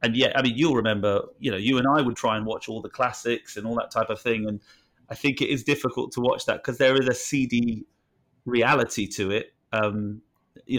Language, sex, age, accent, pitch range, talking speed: English, male, 30-49, British, 115-135 Hz, 240 wpm